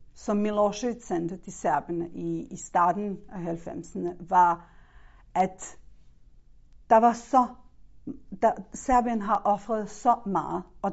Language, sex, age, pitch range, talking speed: Danish, female, 50-69, 170-220 Hz, 120 wpm